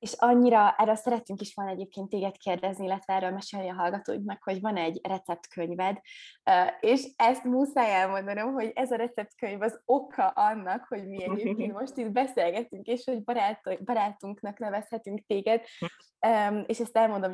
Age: 20-39